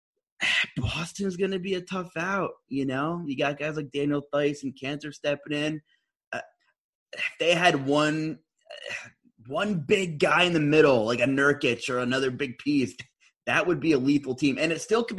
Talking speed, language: 195 wpm, English